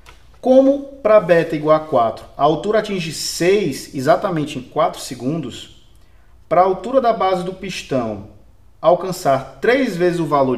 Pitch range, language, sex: 115-185 Hz, Portuguese, male